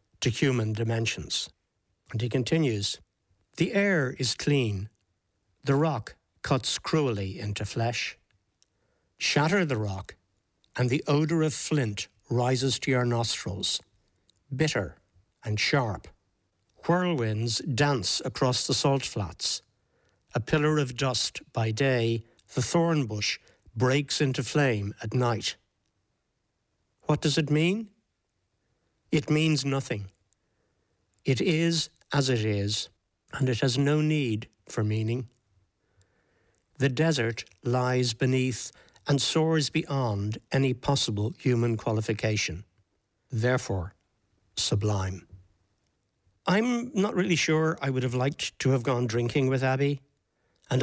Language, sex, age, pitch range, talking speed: English, male, 60-79, 105-140 Hz, 115 wpm